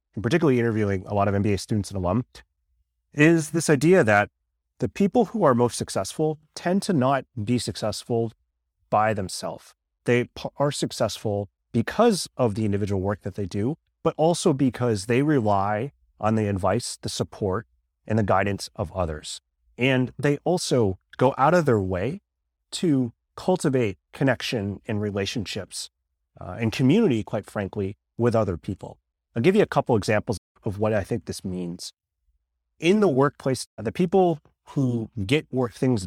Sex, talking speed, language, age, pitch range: male, 160 wpm, English, 30-49, 95-135 Hz